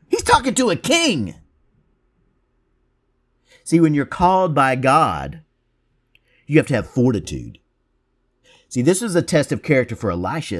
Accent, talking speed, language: American, 140 wpm, English